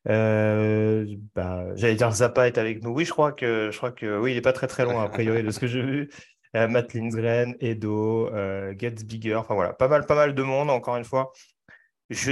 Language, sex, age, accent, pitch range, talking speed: French, male, 30-49, French, 115-130 Hz, 230 wpm